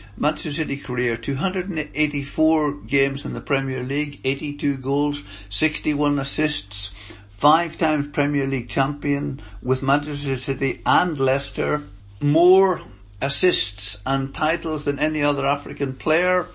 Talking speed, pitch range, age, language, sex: 115 wpm, 105-155 Hz, 60-79, English, male